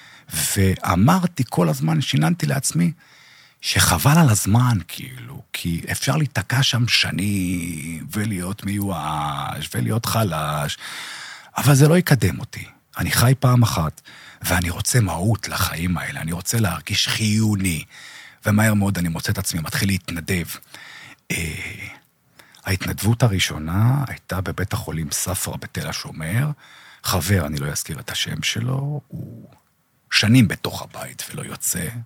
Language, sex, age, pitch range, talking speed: Hebrew, male, 40-59, 95-150 Hz, 120 wpm